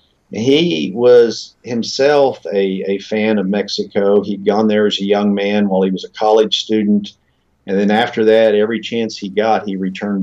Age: 50-69